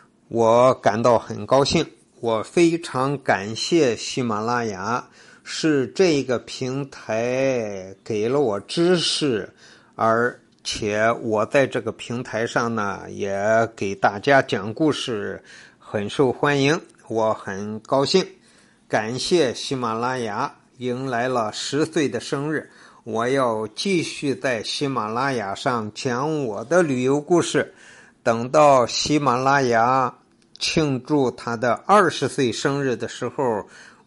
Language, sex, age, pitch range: Chinese, male, 50-69, 115-140 Hz